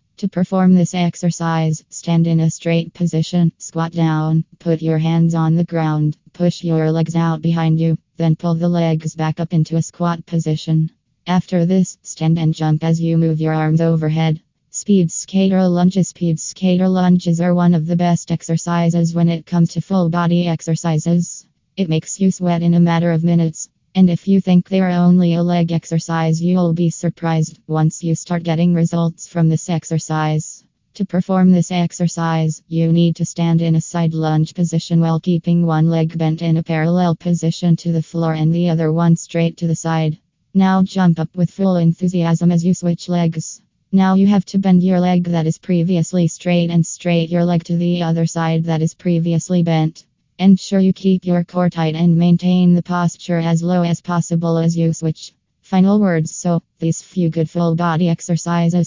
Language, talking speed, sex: English, 190 wpm, female